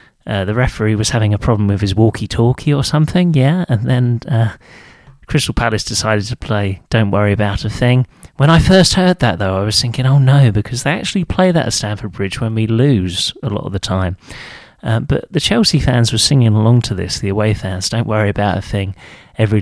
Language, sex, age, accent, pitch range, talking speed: English, male, 30-49, British, 105-135 Hz, 220 wpm